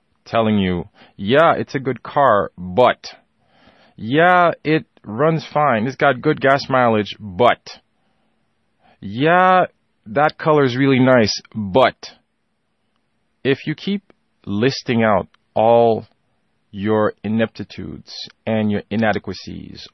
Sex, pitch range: male, 105-140 Hz